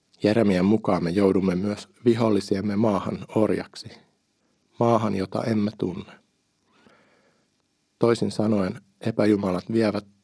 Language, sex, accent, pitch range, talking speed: Finnish, male, native, 95-110 Hz, 95 wpm